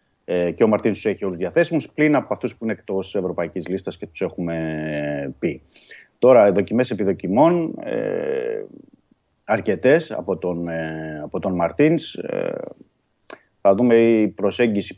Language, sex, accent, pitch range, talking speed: Greek, male, native, 85-115 Hz, 130 wpm